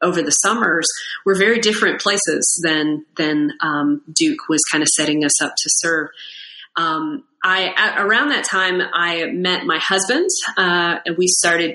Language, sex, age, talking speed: English, female, 30-49, 165 wpm